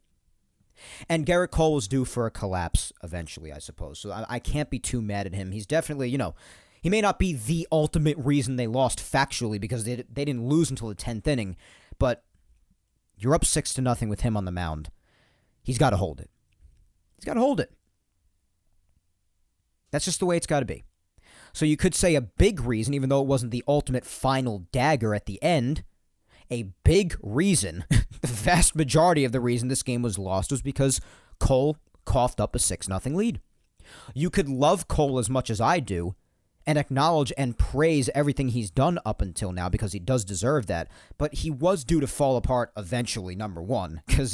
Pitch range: 95-140 Hz